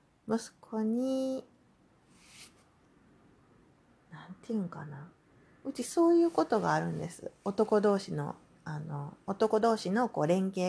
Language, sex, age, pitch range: Japanese, female, 40-59, 175-245 Hz